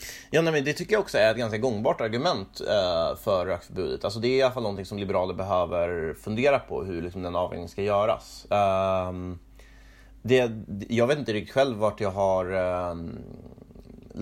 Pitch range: 90-110 Hz